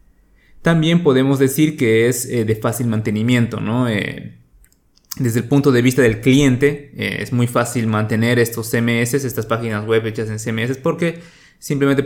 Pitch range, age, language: 110-130 Hz, 20-39, Spanish